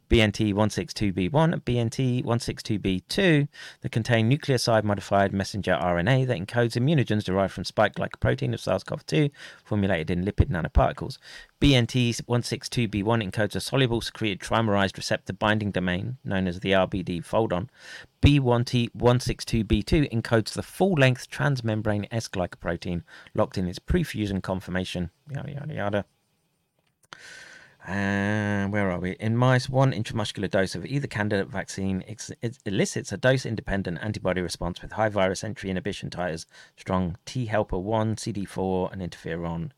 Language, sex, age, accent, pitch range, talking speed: English, male, 30-49, British, 95-120 Hz, 135 wpm